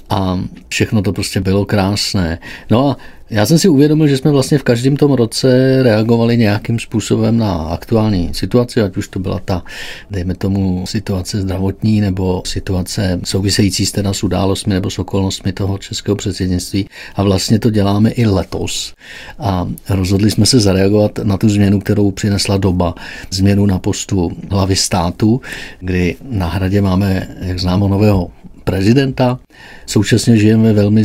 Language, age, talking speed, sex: Czech, 50-69, 155 wpm, male